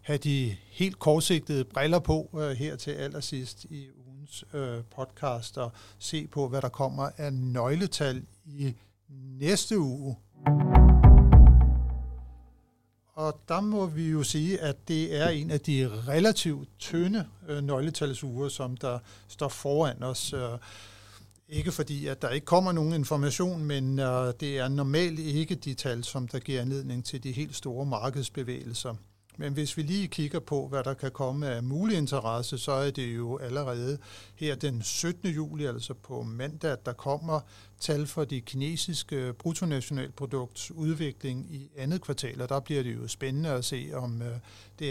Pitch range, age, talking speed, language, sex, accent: 120-150 Hz, 60-79, 160 wpm, Danish, male, native